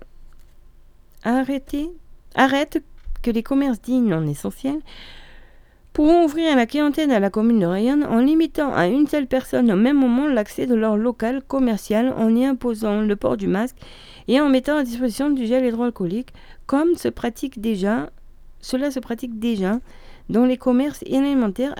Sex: female